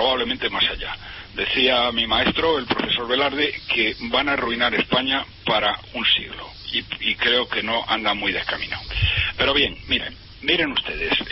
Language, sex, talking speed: Spanish, male, 160 wpm